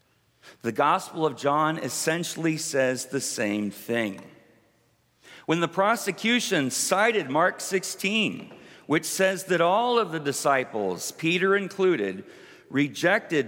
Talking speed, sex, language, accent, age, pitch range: 110 wpm, male, English, American, 50-69, 145-195 Hz